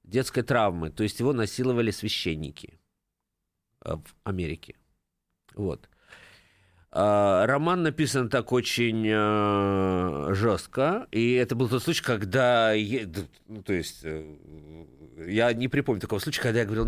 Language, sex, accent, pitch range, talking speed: Russian, male, native, 100-135 Hz, 130 wpm